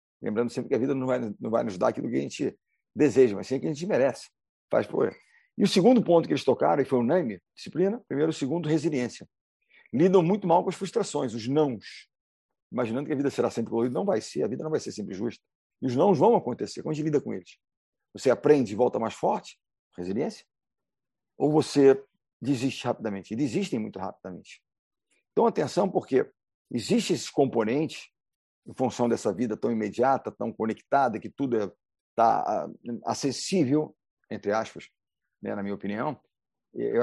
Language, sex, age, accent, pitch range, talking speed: Portuguese, male, 50-69, Brazilian, 120-160 Hz, 190 wpm